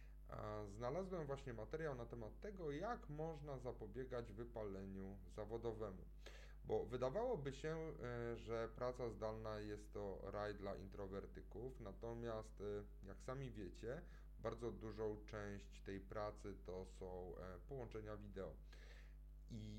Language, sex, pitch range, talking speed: Polish, male, 95-125 Hz, 110 wpm